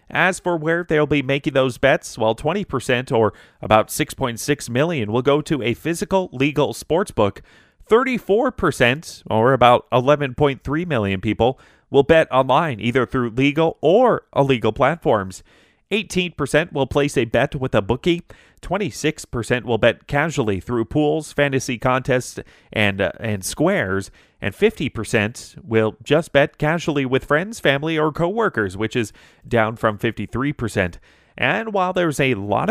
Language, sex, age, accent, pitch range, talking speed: English, male, 30-49, American, 115-155 Hz, 145 wpm